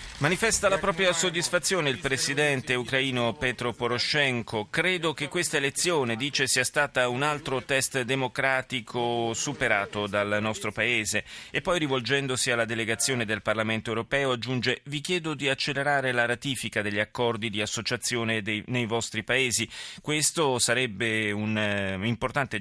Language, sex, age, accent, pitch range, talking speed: Italian, male, 30-49, native, 115-145 Hz, 135 wpm